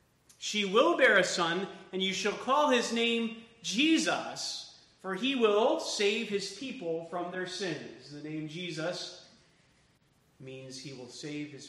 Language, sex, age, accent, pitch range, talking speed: English, male, 30-49, American, 150-210 Hz, 150 wpm